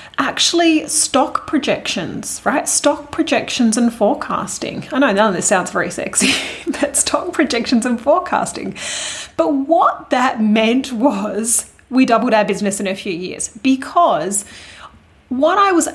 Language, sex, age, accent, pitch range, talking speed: English, female, 30-49, Australian, 205-290 Hz, 145 wpm